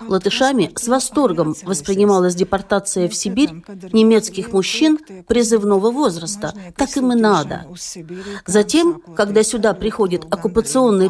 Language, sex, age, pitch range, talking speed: Russian, female, 50-69, 180-230 Hz, 110 wpm